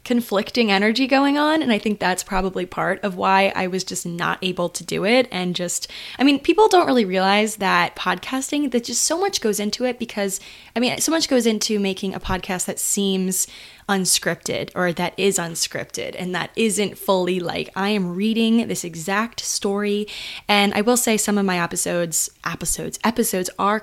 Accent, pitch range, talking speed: American, 180-220 Hz, 190 wpm